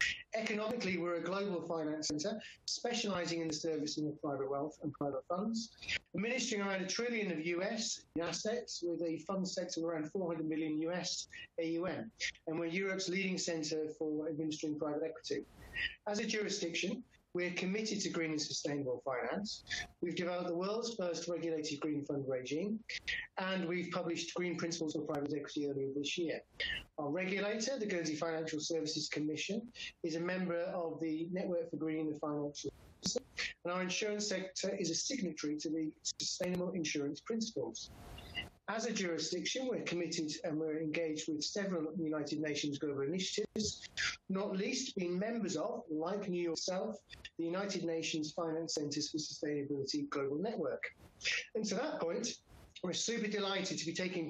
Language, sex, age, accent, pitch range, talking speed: English, male, 30-49, British, 155-190 Hz, 160 wpm